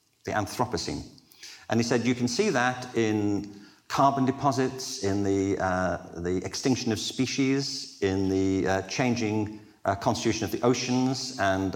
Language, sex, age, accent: English, male, 50-69, British